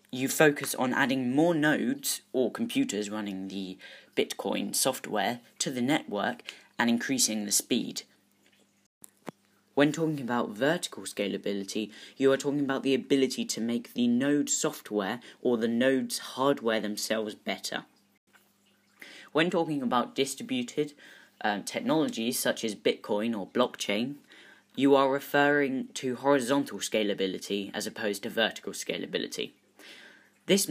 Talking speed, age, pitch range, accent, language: 125 wpm, 10-29, 120-160 Hz, British, English